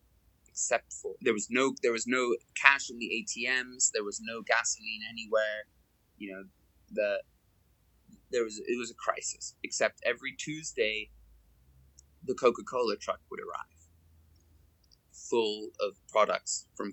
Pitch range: 75-115 Hz